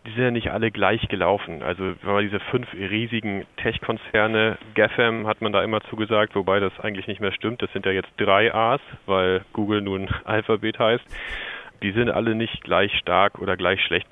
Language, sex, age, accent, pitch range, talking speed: German, male, 30-49, German, 95-110 Hz, 195 wpm